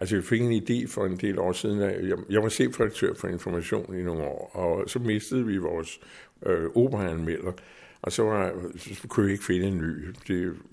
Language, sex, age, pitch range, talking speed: Danish, male, 60-79, 85-110 Hz, 220 wpm